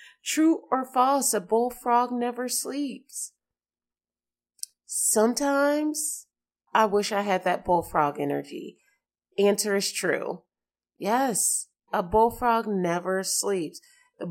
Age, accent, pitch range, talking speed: 30-49, American, 180-230 Hz, 100 wpm